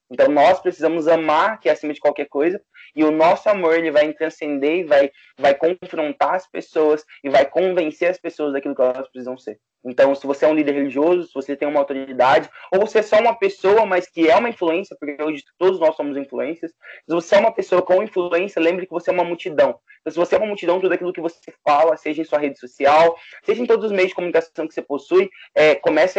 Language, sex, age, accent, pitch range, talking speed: Portuguese, male, 20-39, Brazilian, 145-180 Hz, 230 wpm